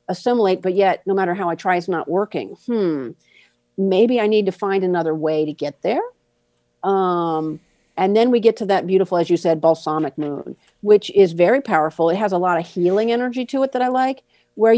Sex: female